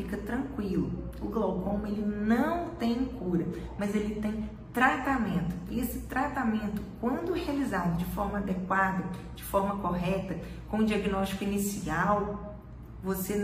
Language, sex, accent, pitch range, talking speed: Portuguese, female, Brazilian, 185-245 Hz, 120 wpm